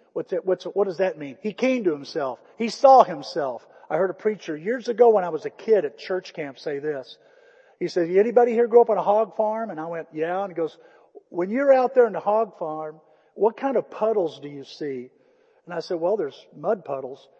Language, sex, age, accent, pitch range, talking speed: English, male, 50-69, American, 180-275 Hz, 240 wpm